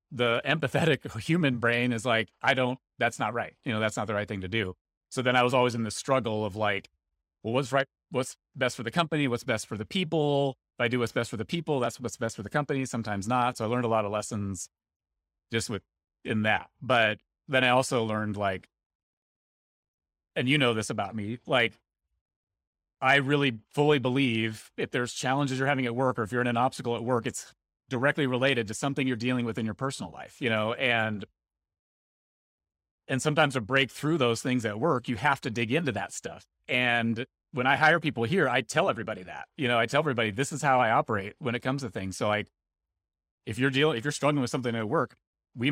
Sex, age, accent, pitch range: male, 30-49, American, 110-135 Hz